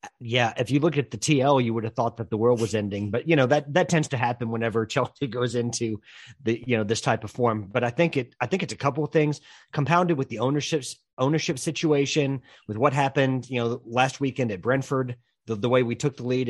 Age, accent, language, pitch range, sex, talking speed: 40-59, American, English, 115-135 Hz, male, 245 wpm